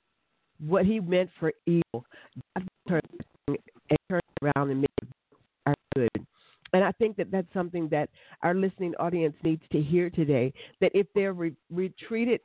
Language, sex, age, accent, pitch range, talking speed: English, female, 50-69, American, 140-180 Hz, 160 wpm